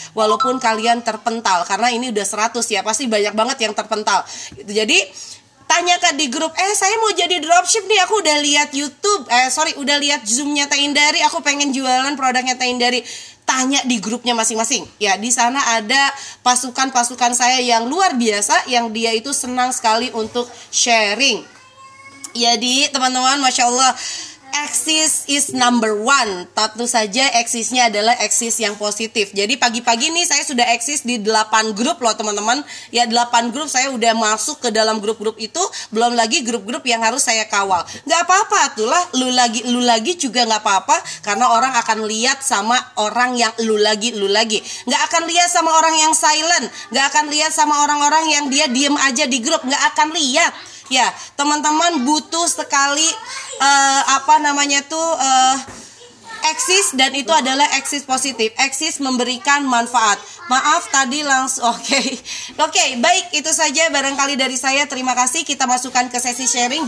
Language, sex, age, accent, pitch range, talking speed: Indonesian, female, 20-39, native, 235-300 Hz, 160 wpm